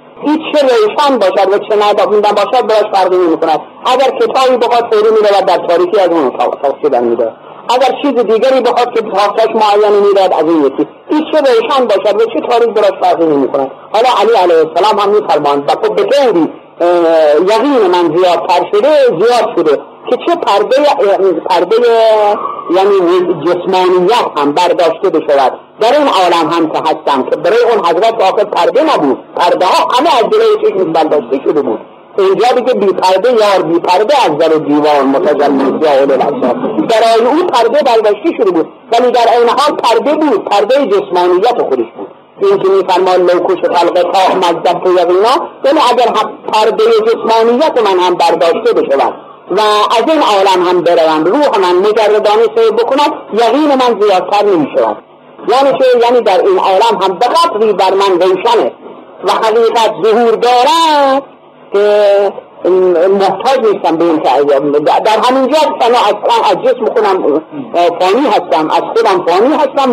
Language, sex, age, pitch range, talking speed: Persian, male, 50-69, 180-295 Hz, 160 wpm